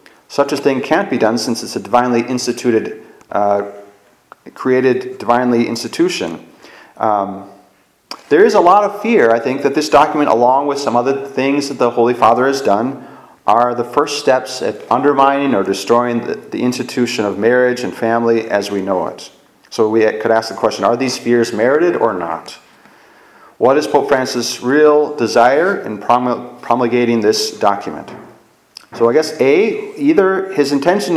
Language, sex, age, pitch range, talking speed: English, male, 30-49, 115-145 Hz, 165 wpm